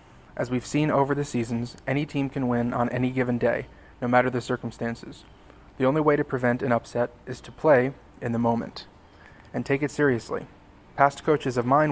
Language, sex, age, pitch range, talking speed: English, male, 30-49, 120-135 Hz, 195 wpm